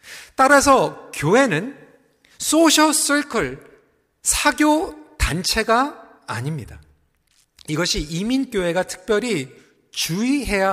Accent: native